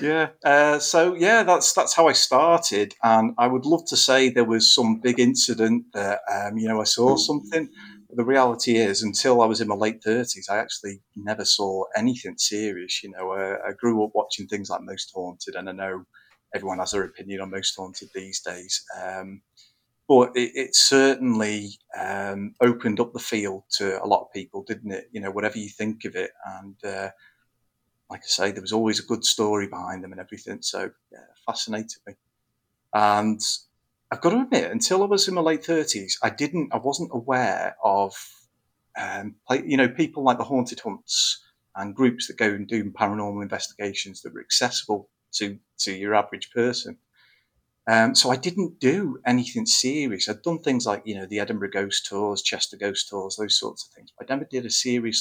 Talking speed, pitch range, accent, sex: 200 wpm, 100-130 Hz, British, male